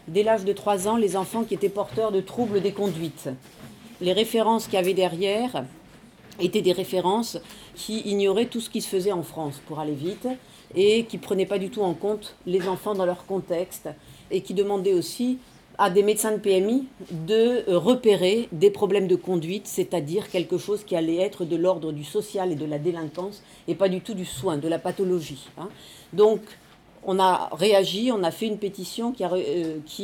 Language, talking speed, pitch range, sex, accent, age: French, 195 wpm, 180-210 Hz, female, French, 40-59